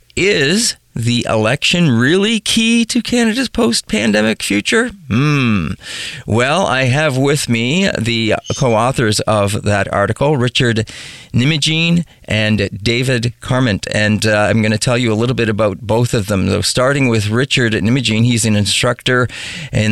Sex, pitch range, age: male, 105-135 Hz, 40-59